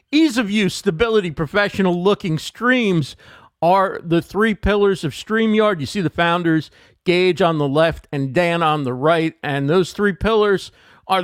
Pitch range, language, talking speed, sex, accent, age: 155-200 Hz, English, 150 wpm, male, American, 50-69